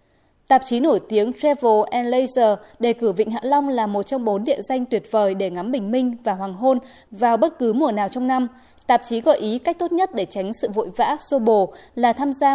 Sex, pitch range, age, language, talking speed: female, 215-265 Hz, 20-39, Vietnamese, 245 wpm